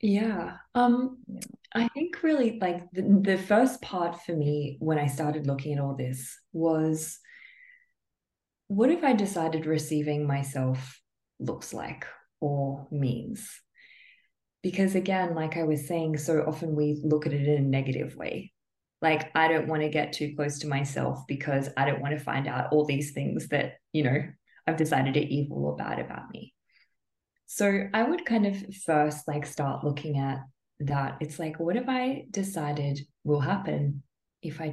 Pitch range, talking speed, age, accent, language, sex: 150-205 Hz, 170 wpm, 20-39, Australian, English, female